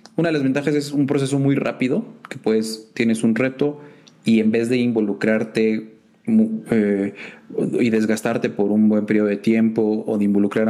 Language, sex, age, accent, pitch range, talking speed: Spanish, male, 30-49, Mexican, 105-125 Hz, 170 wpm